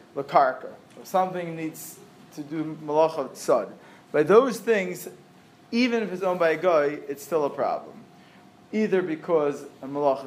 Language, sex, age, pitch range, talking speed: English, male, 30-49, 145-190 Hz, 150 wpm